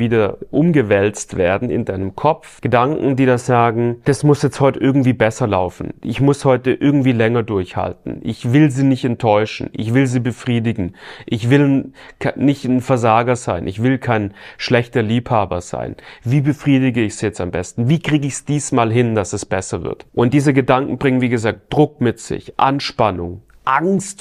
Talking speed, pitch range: 180 wpm, 105-135 Hz